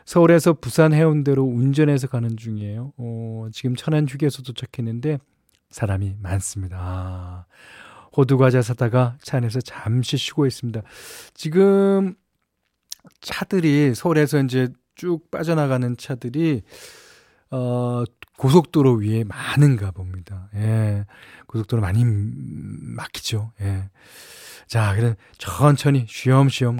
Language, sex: Korean, male